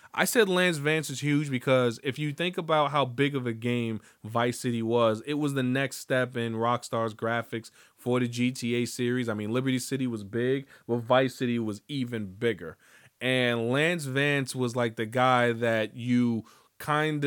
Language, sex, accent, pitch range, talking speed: English, male, American, 115-135 Hz, 185 wpm